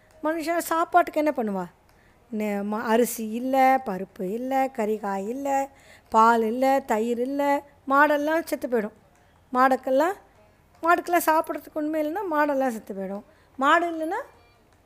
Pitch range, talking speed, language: 220-290 Hz, 100 wpm, Tamil